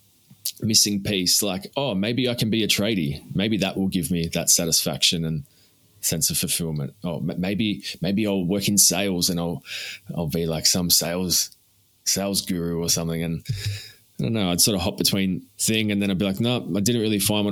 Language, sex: English, male